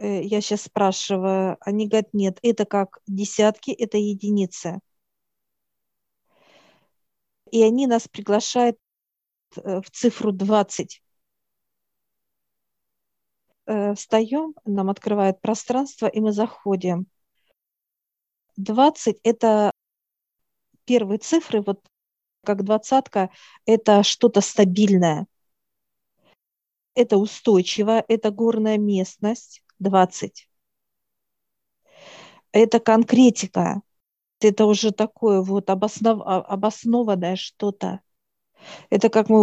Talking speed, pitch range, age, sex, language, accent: 80 wpm, 195-220 Hz, 50-69, female, Russian, native